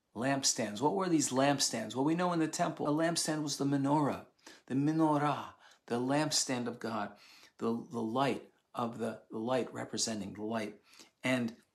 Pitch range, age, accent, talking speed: 135-170 Hz, 50-69, American, 170 wpm